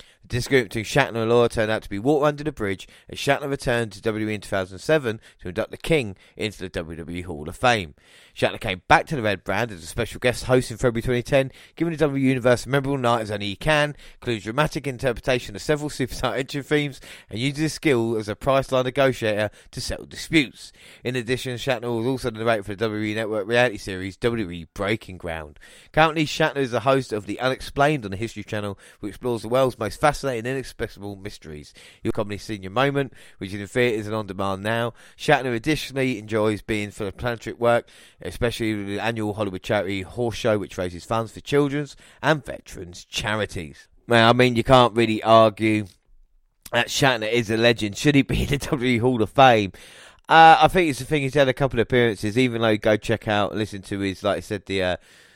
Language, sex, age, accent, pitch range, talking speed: English, male, 30-49, British, 105-130 Hz, 215 wpm